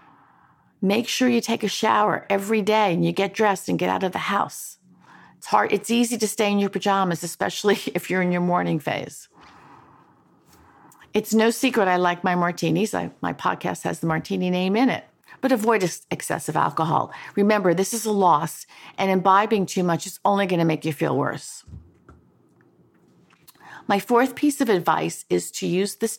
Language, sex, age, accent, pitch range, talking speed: English, female, 50-69, American, 175-210 Hz, 185 wpm